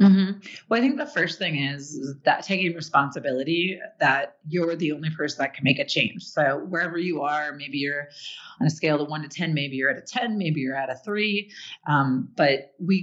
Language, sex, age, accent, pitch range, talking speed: English, female, 30-49, American, 145-190 Hz, 225 wpm